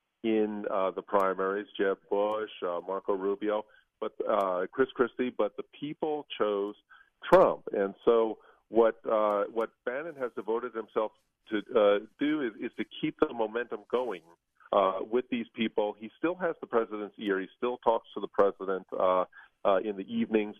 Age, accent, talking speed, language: 40-59, American, 170 wpm, English